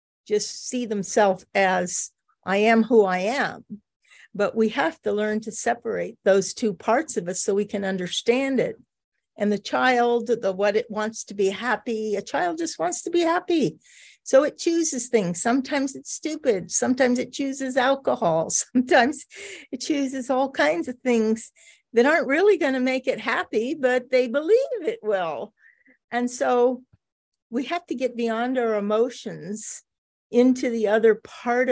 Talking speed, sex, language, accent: 165 wpm, female, English, American